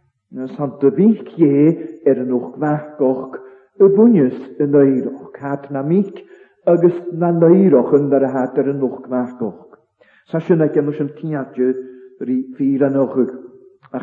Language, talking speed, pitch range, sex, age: English, 85 wpm, 135-175 Hz, male, 50-69